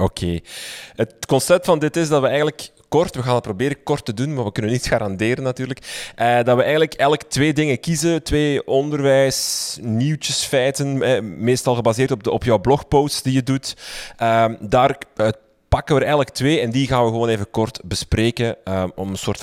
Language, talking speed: Dutch, 200 wpm